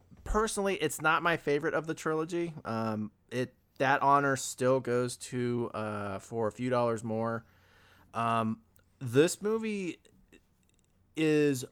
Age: 30-49